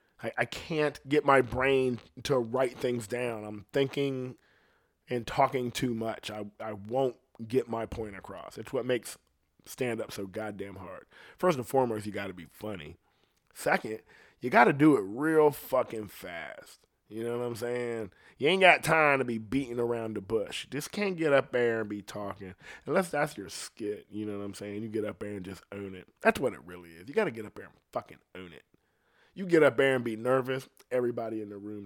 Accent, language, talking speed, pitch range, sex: American, English, 210 wpm, 100-135 Hz, male